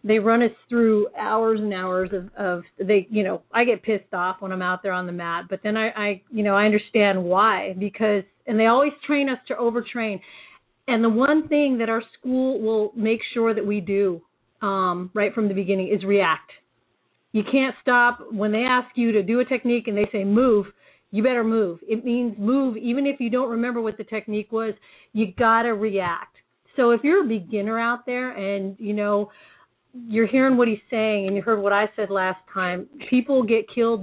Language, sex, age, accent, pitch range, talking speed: English, female, 40-59, American, 200-235 Hz, 210 wpm